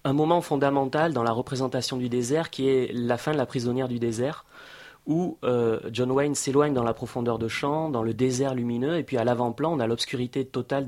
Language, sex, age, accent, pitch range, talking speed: French, male, 30-49, French, 125-150 Hz, 215 wpm